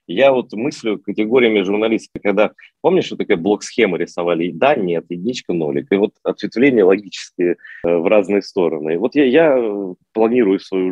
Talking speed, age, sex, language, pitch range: 160 wpm, 30-49, male, Russian, 95-135 Hz